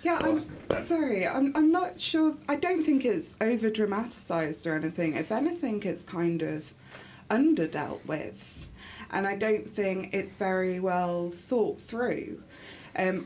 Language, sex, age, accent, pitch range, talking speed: English, female, 20-39, British, 160-185 Hz, 150 wpm